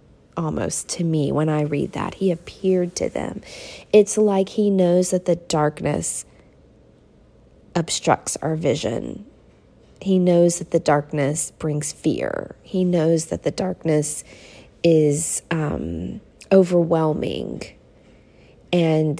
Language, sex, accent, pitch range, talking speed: English, female, American, 160-185 Hz, 115 wpm